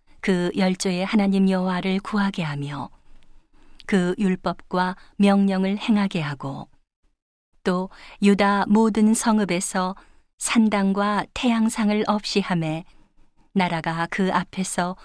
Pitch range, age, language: 180-210 Hz, 40-59, Korean